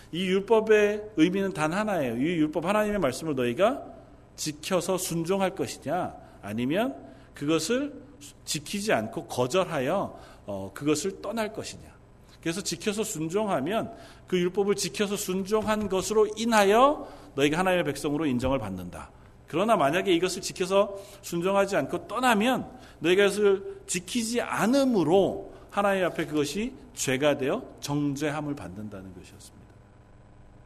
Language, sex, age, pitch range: Korean, male, 40-59, 130-200 Hz